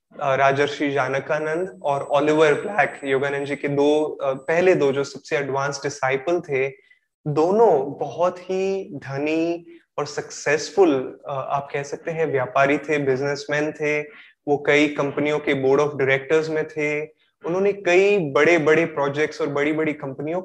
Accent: native